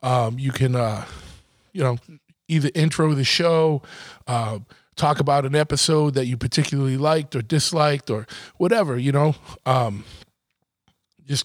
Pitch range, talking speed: 130-160 Hz, 140 wpm